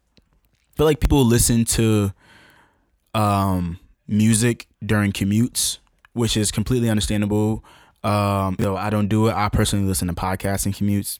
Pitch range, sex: 95-110 Hz, male